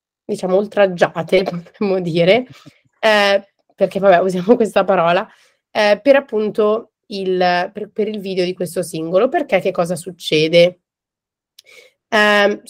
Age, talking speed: 30-49, 115 wpm